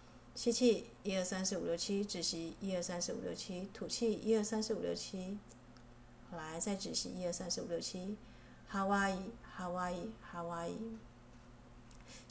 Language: Chinese